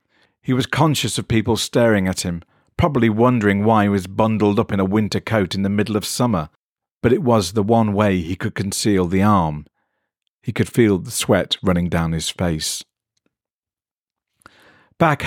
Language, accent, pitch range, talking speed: English, British, 95-125 Hz, 175 wpm